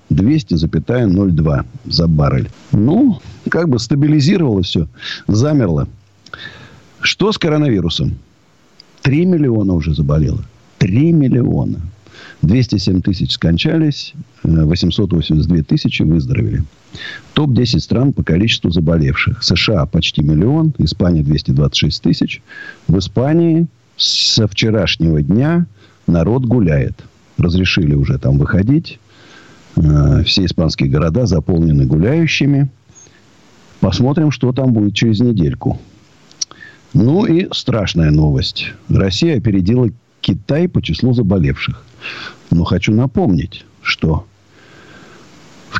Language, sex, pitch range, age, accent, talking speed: Russian, male, 85-145 Hz, 50-69, native, 95 wpm